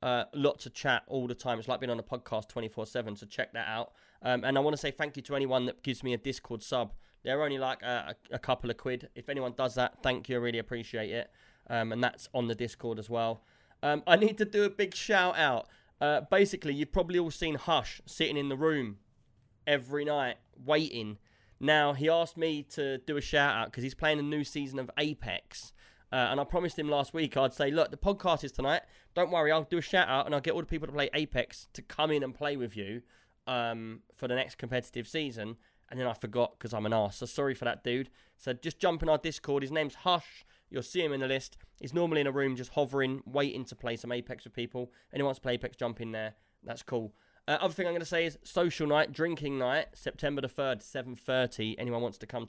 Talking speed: 240 wpm